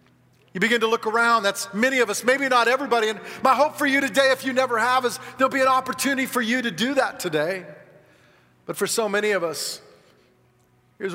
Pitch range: 165-225 Hz